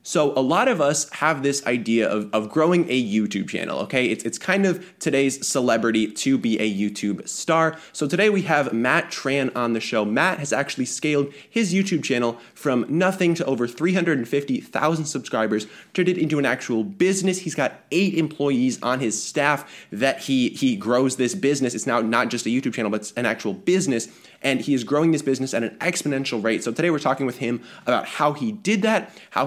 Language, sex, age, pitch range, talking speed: English, male, 20-39, 115-160 Hz, 205 wpm